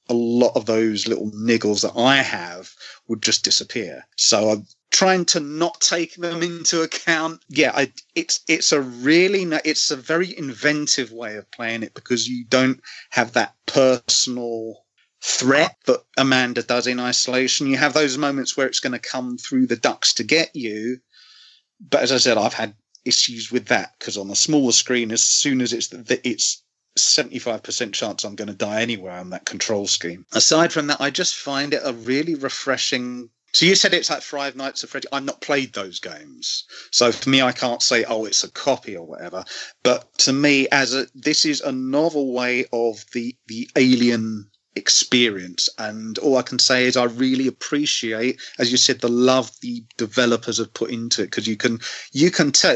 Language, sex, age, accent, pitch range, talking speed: English, male, 30-49, British, 115-150 Hz, 195 wpm